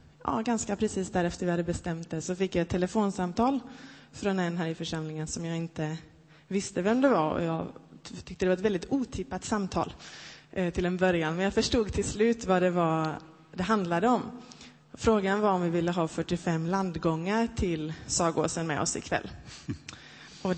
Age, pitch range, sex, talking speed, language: 20-39, 170-205 Hz, female, 180 wpm, Swedish